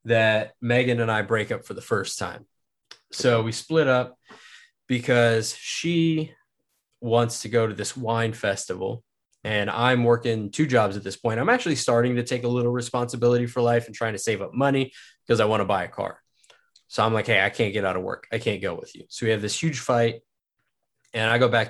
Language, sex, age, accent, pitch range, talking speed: English, male, 20-39, American, 110-125 Hz, 220 wpm